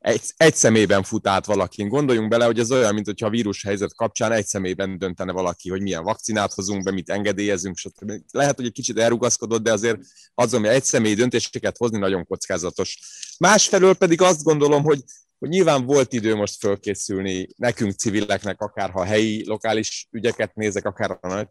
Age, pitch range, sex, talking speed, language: 30-49, 100-115 Hz, male, 175 wpm, Hungarian